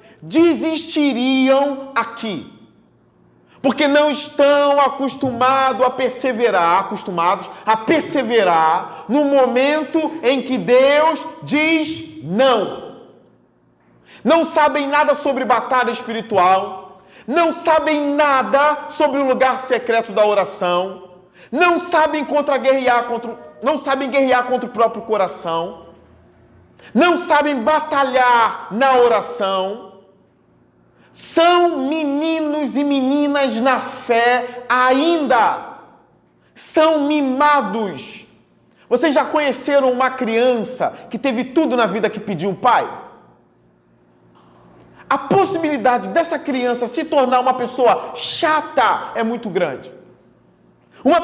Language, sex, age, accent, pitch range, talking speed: Portuguese, male, 40-59, Brazilian, 230-300 Hz, 100 wpm